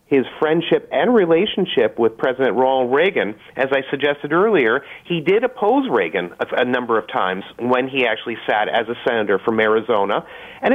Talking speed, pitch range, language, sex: 175 wpm, 125-170 Hz, English, male